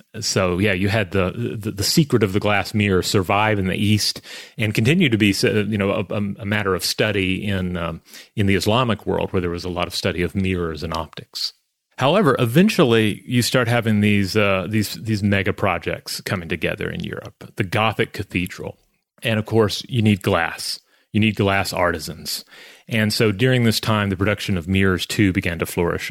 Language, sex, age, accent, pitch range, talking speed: English, male, 30-49, American, 95-110 Hz, 195 wpm